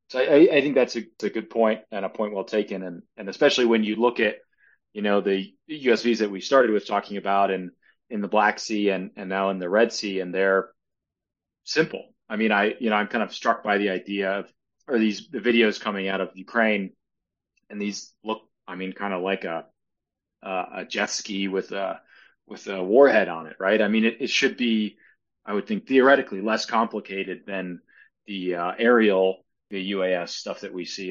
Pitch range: 95-115 Hz